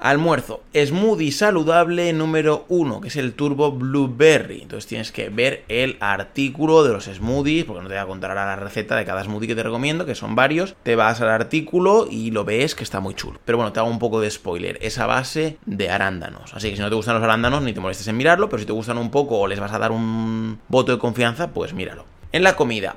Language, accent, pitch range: Spanish, Spanish, 110-155 Hz